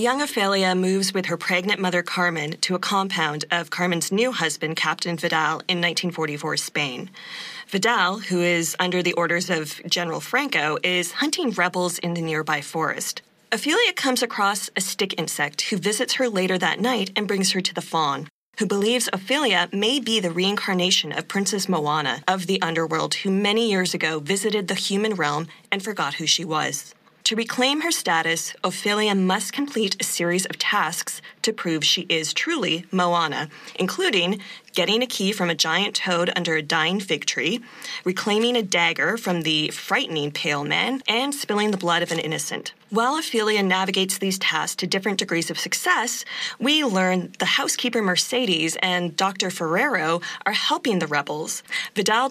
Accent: American